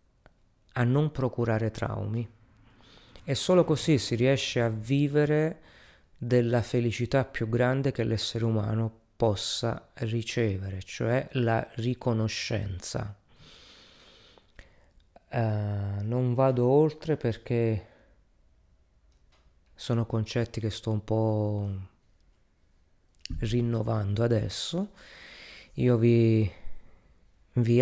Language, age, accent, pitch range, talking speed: Italian, 30-49, native, 105-120 Hz, 80 wpm